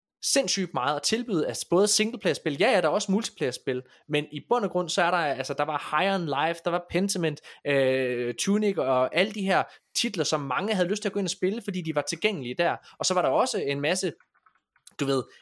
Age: 20-39